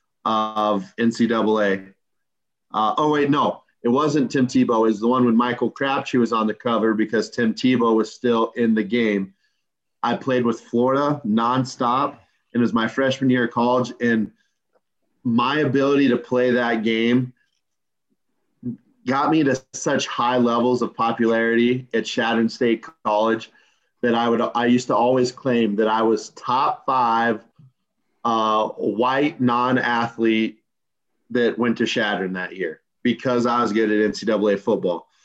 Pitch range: 115-125 Hz